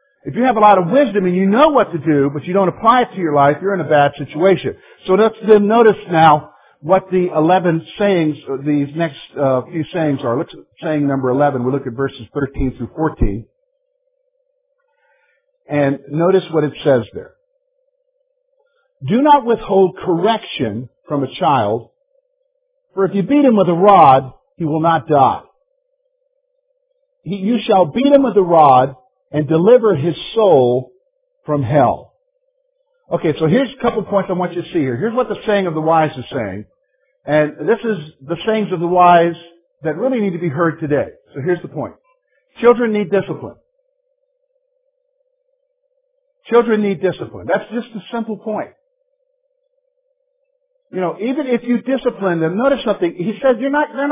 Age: 50-69